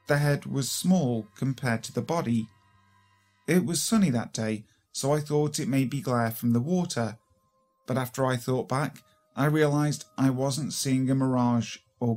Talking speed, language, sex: 180 wpm, English, male